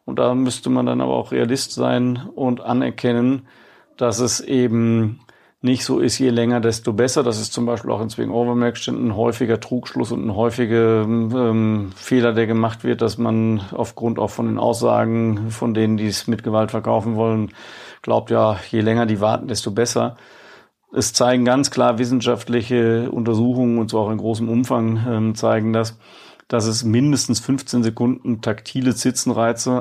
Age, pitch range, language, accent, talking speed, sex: 40-59, 110-120 Hz, German, German, 170 wpm, male